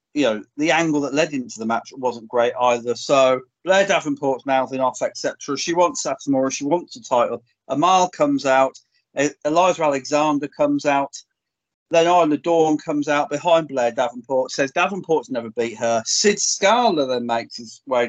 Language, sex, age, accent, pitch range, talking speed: English, male, 40-59, British, 120-145 Hz, 175 wpm